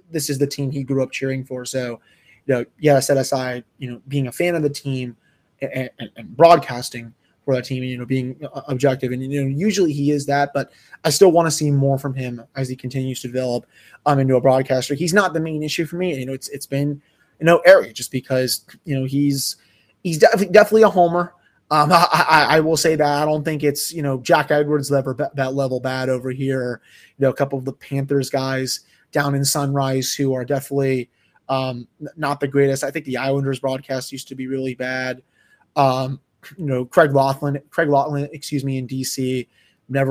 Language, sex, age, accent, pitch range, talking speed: English, male, 20-39, American, 130-150 Hz, 220 wpm